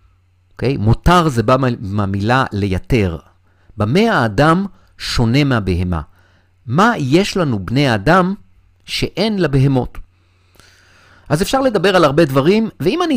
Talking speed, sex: 125 wpm, male